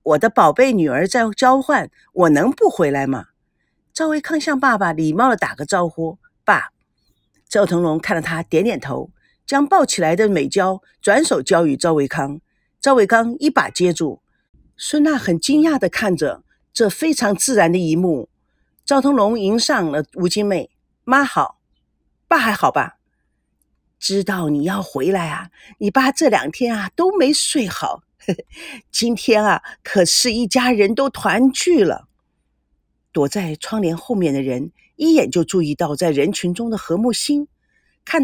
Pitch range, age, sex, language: 175-275 Hz, 50-69, female, Chinese